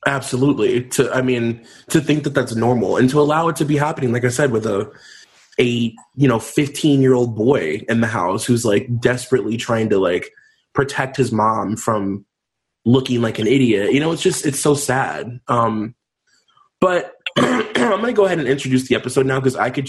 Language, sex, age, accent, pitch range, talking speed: English, male, 20-39, American, 115-140 Hz, 200 wpm